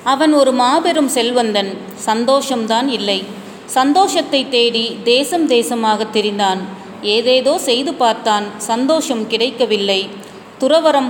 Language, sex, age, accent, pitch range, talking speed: Tamil, female, 30-49, native, 225-275 Hz, 90 wpm